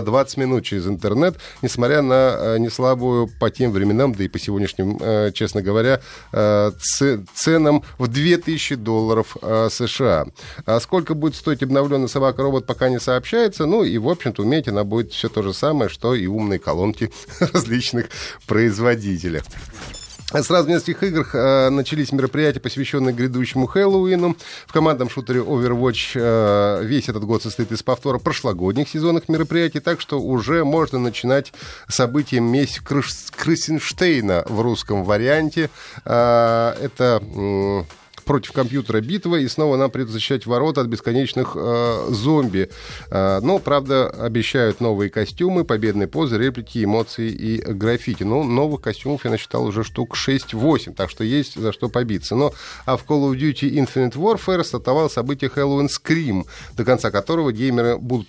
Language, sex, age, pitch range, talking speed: Russian, male, 30-49, 110-150 Hz, 150 wpm